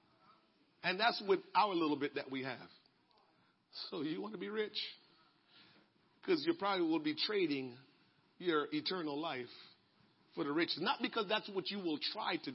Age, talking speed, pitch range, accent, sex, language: 50-69, 165 wpm, 245-340 Hz, American, male, English